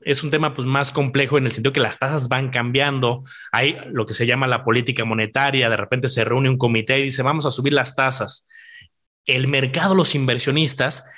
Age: 30-49